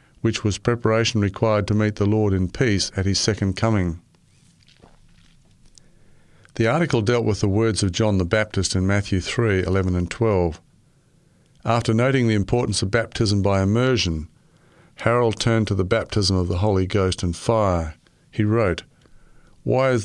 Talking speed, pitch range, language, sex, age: 160 wpm, 95-115 Hz, English, male, 50-69